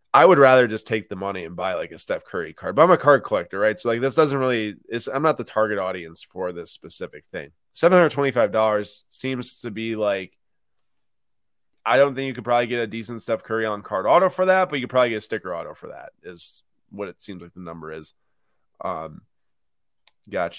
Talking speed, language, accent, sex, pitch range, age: 220 wpm, English, American, male, 100-125 Hz, 20-39